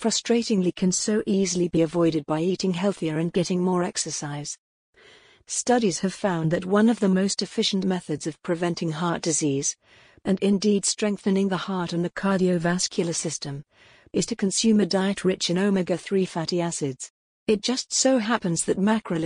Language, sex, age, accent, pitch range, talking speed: English, female, 50-69, British, 175-205 Hz, 160 wpm